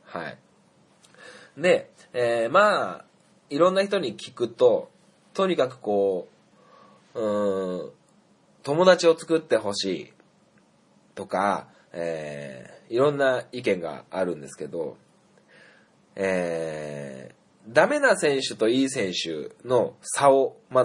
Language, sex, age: Japanese, male, 20-39